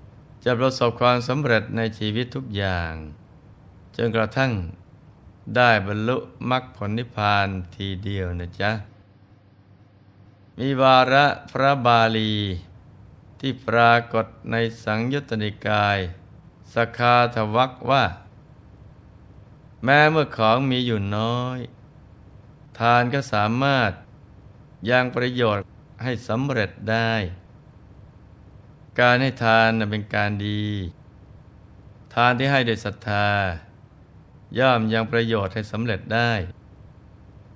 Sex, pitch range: male, 100-125 Hz